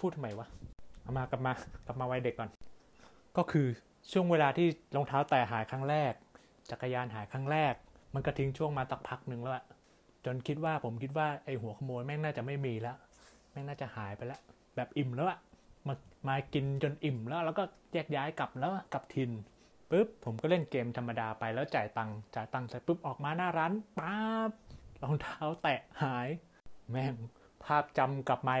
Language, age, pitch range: Thai, 20-39, 125-155 Hz